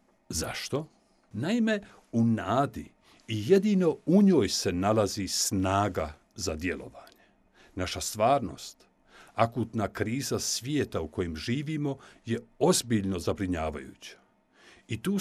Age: 60-79